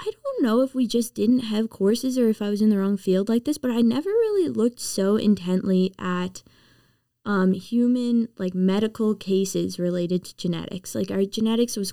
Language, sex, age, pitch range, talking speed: English, female, 20-39, 180-225 Hz, 195 wpm